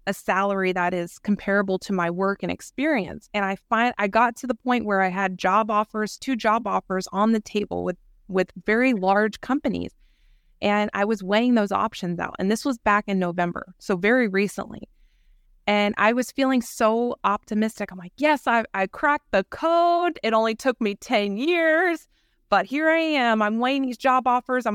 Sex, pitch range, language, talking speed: female, 195-245 Hz, English, 195 wpm